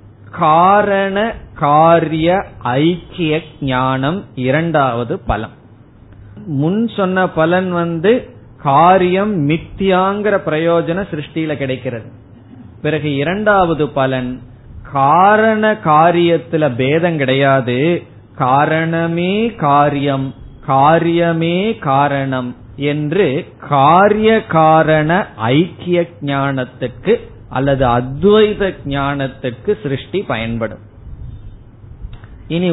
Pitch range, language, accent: 125-170 Hz, Tamil, native